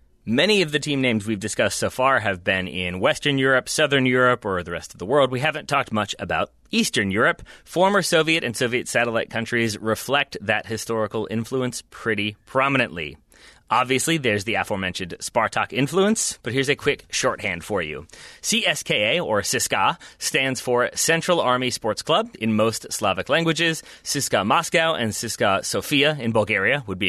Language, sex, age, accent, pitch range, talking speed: English, male, 30-49, American, 105-150 Hz, 170 wpm